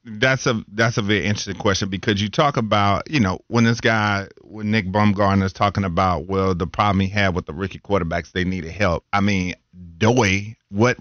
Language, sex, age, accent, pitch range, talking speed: English, male, 40-59, American, 100-125 Hz, 215 wpm